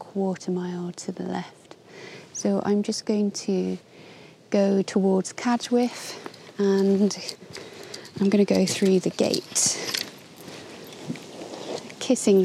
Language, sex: English, female